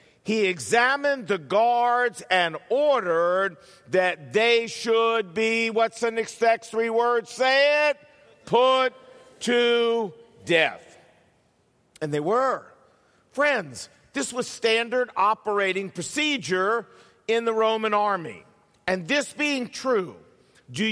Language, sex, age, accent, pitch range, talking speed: English, male, 50-69, American, 190-250 Hz, 110 wpm